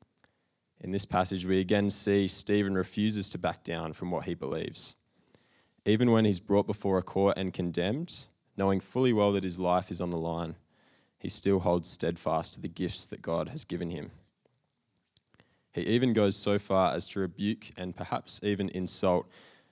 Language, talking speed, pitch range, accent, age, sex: English, 175 wpm, 90-105 Hz, Australian, 20-39, male